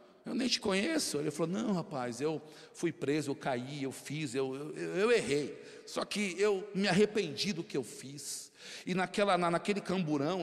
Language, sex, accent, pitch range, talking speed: Portuguese, male, Brazilian, 150-205 Hz, 180 wpm